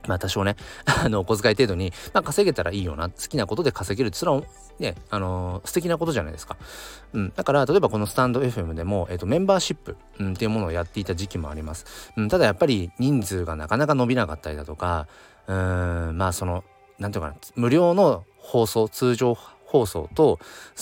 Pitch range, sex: 90-125 Hz, male